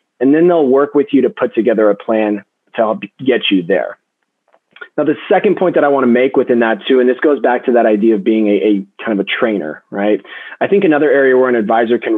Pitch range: 110-145 Hz